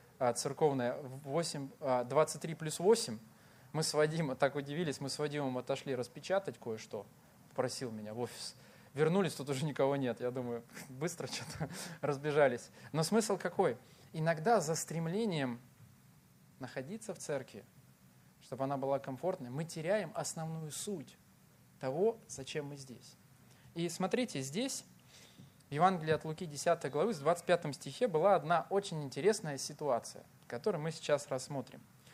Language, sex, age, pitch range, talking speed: Russian, male, 20-39, 130-180 Hz, 135 wpm